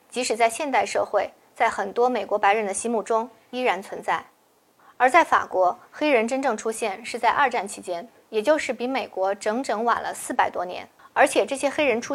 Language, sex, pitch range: Chinese, female, 205-275 Hz